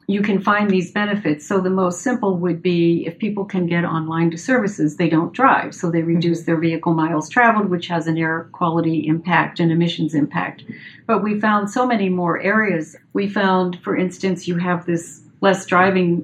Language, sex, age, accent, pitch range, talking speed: English, female, 50-69, American, 165-185 Hz, 195 wpm